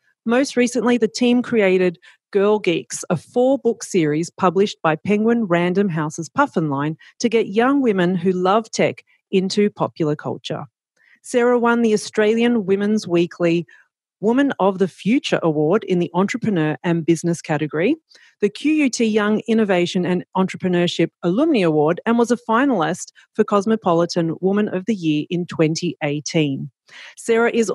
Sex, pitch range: female, 175-230 Hz